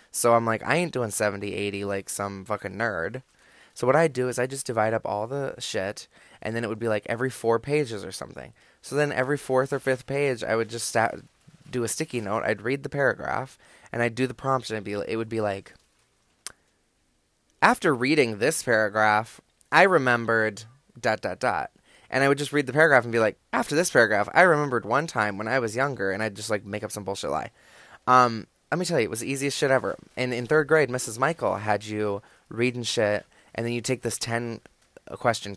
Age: 20-39